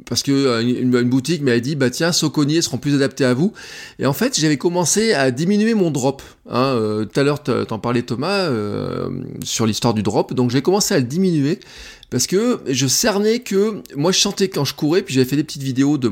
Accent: French